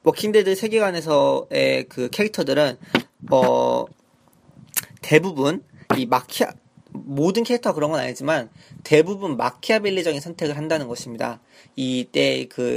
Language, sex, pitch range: Korean, male, 145-215 Hz